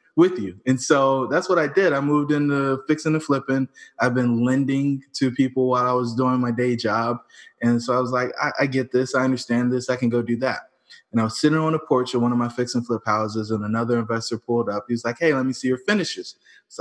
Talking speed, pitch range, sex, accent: 255 wpm, 115-130 Hz, male, American